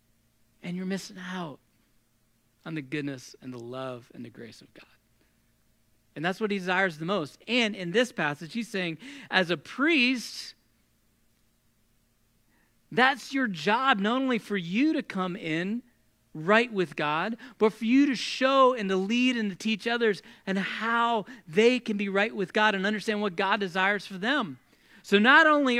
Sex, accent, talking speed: male, American, 170 wpm